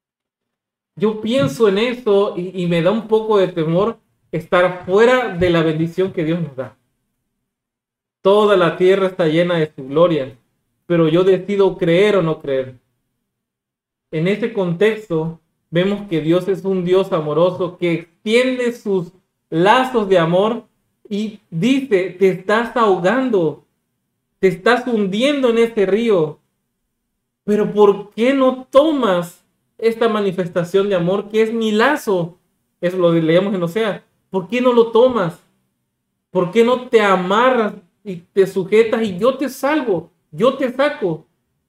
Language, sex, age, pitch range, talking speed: Spanish, male, 40-59, 170-220 Hz, 145 wpm